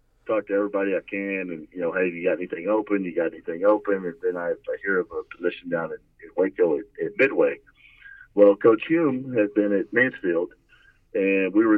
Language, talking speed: English, 210 wpm